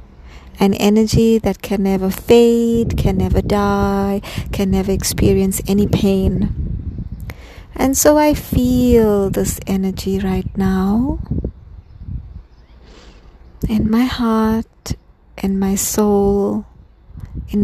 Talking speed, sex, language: 100 wpm, female, English